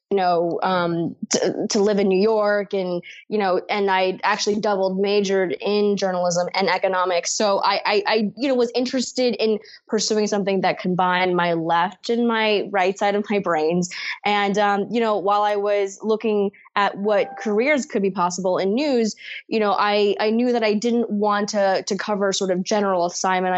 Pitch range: 185-210 Hz